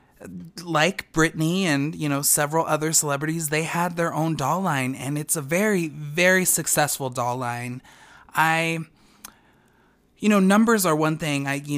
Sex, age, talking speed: male, 20-39, 160 wpm